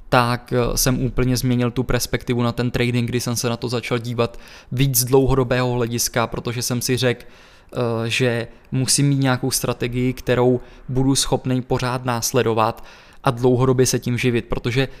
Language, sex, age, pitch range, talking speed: Czech, male, 20-39, 120-130 Hz, 155 wpm